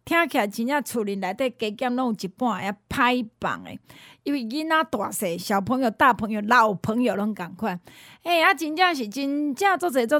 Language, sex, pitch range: Chinese, female, 225-320 Hz